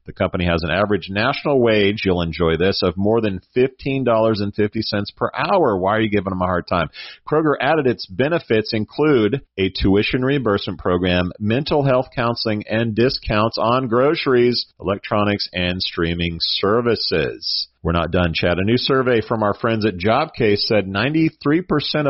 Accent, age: American, 40-59